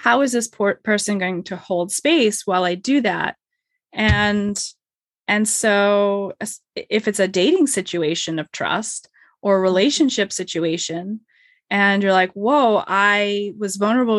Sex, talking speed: female, 135 wpm